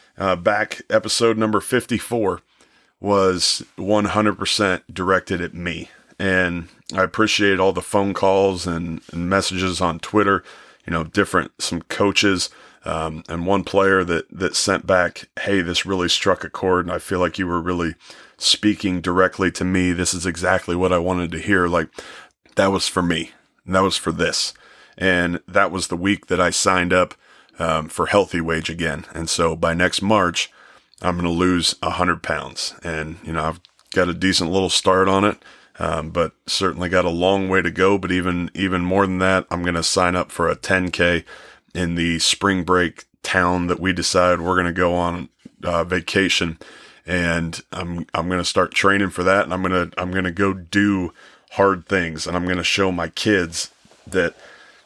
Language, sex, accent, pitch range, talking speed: English, male, American, 85-95 Hz, 190 wpm